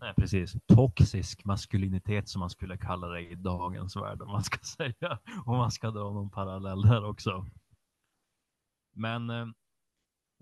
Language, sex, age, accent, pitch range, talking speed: Swedish, male, 30-49, native, 95-115 Hz, 145 wpm